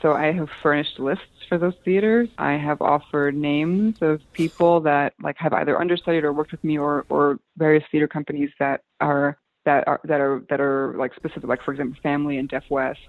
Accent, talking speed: American, 205 wpm